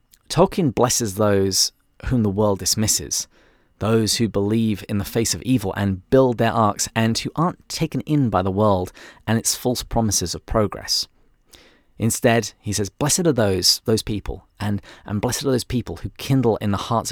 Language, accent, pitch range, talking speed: English, British, 95-120 Hz, 180 wpm